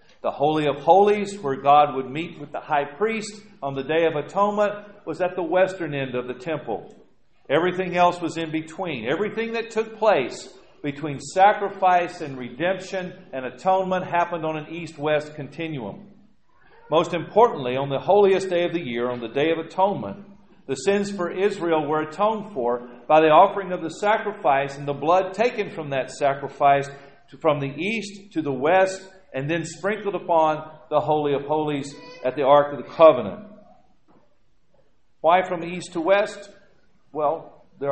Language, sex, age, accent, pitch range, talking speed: English, male, 50-69, American, 145-195 Hz, 170 wpm